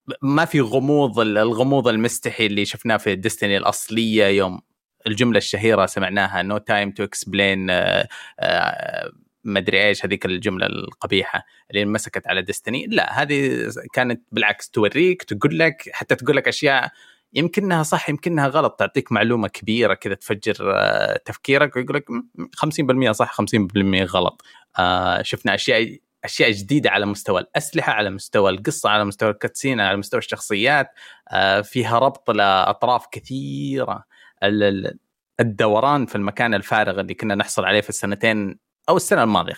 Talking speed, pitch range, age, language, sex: 135 wpm, 100-135 Hz, 20-39, Arabic, male